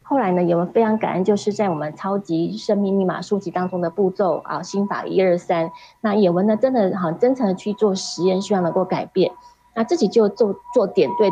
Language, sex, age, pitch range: Chinese, female, 30-49, 175-225 Hz